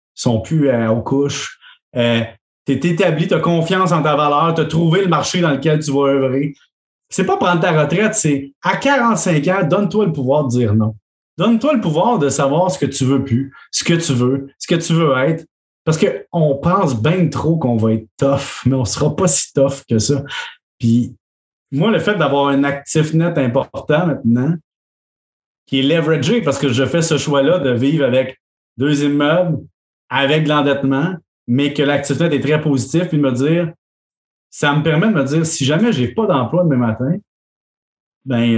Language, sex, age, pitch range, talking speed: French, male, 30-49, 135-170 Hz, 200 wpm